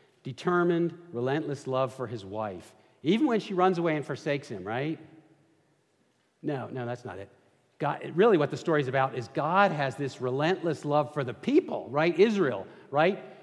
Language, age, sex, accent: English, 50-69, male, American